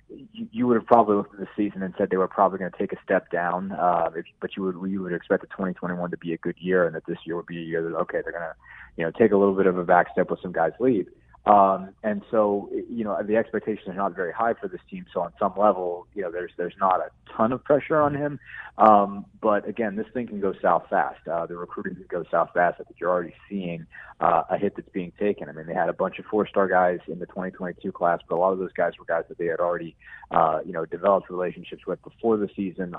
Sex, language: male, English